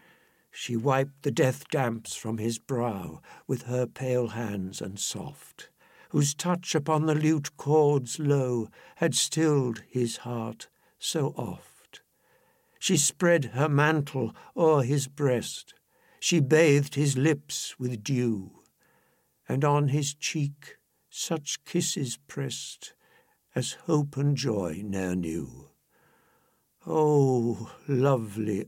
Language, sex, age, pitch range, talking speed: English, male, 60-79, 115-145 Hz, 115 wpm